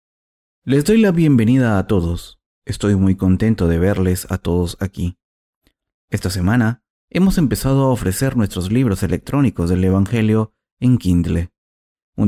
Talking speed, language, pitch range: 135 wpm, Spanish, 90-125 Hz